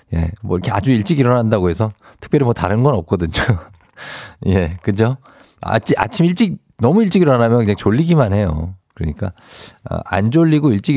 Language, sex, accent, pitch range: Korean, male, native, 95-130 Hz